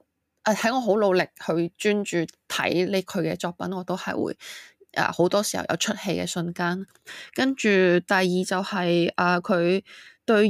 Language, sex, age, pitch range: Chinese, female, 20-39, 175-225 Hz